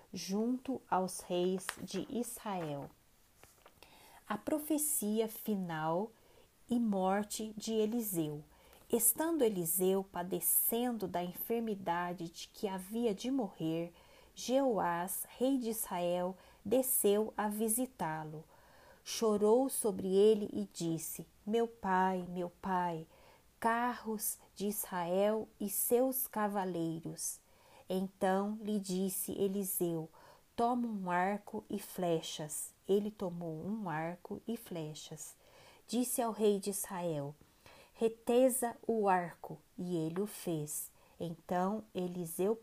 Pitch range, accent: 175-225 Hz, Brazilian